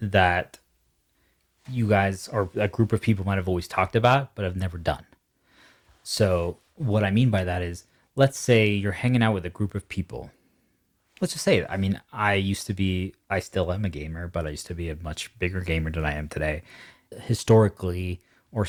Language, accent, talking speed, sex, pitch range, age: English, American, 200 wpm, male, 90-110 Hz, 20-39